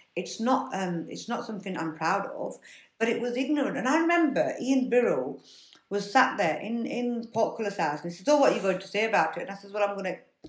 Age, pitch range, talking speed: 60-79, 195-255 Hz, 250 wpm